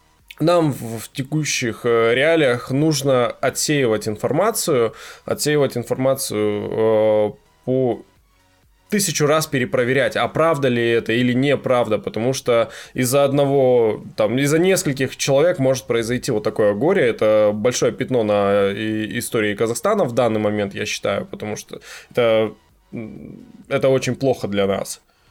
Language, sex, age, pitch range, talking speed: Russian, male, 10-29, 110-135 Hz, 130 wpm